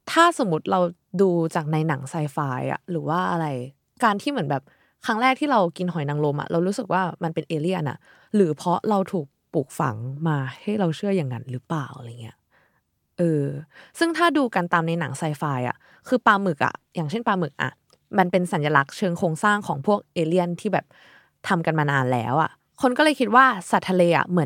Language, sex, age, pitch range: Thai, female, 20-39, 155-215 Hz